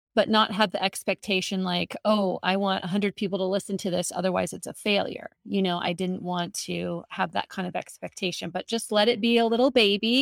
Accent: American